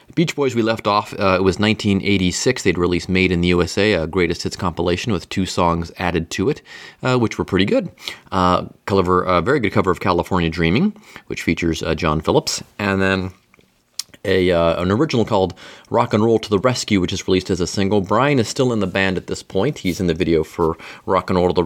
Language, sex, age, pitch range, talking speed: English, male, 30-49, 85-110 Hz, 225 wpm